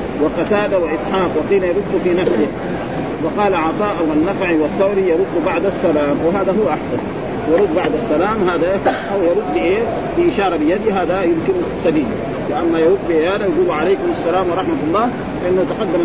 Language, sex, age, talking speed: Arabic, male, 40-59, 145 wpm